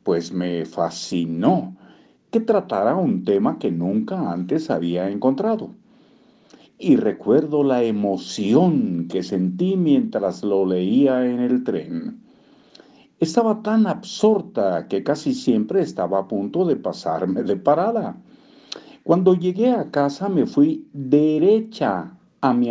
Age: 50-69